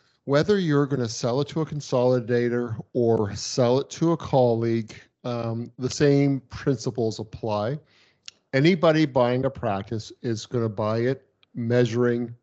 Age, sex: 50-69, male